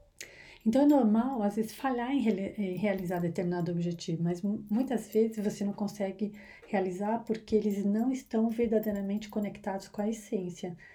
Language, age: Portuguese, 40-59